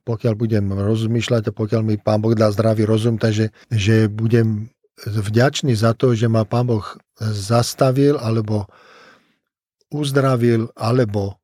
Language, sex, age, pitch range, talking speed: Slovak, male, 40-59, 105-120 Hz, 130 wpm